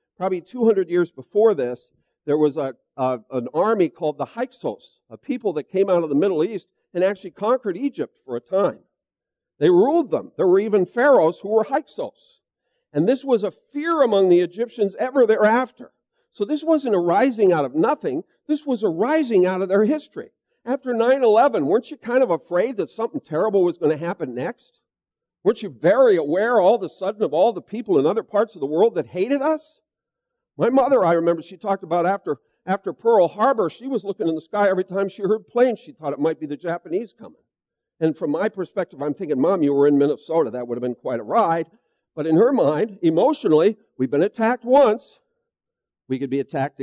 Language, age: English, 50-69